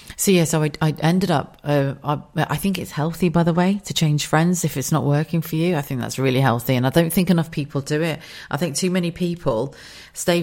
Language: English